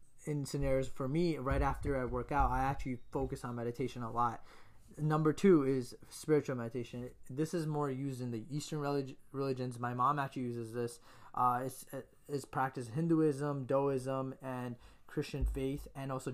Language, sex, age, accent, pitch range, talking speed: English, male, 20-39, American, 125-145 Hz, 170 wpm